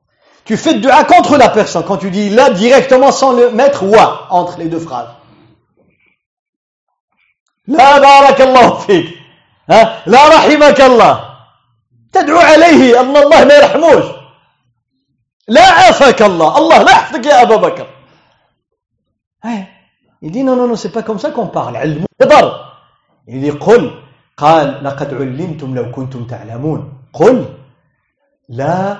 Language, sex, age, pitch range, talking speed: French, male, 50-69, 140-235 Hz, 90 wpm